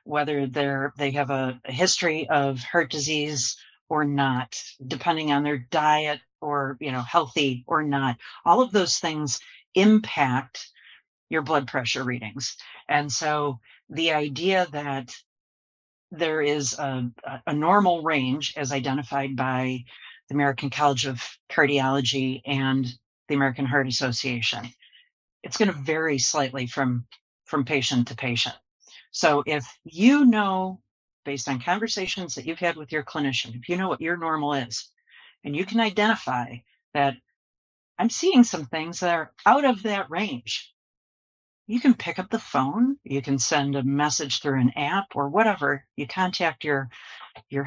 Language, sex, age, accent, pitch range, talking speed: English, female, 40-59, American, 130-165 Hz, 150 wpm